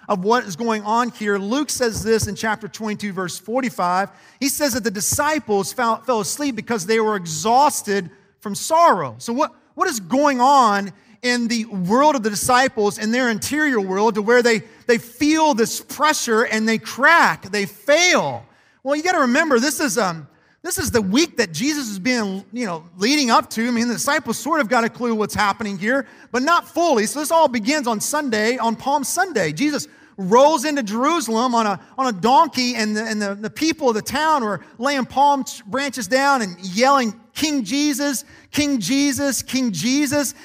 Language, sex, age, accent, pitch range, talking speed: English, male, 40-59, American, 215-290 Hz, 195 wpm